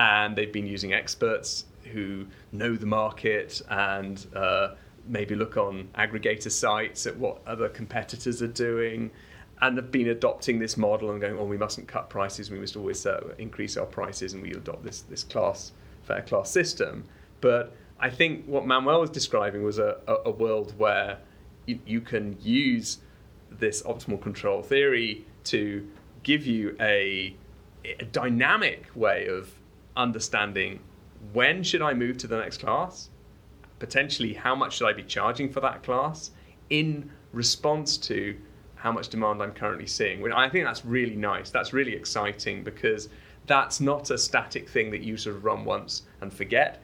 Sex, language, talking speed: male, English, 165 wpm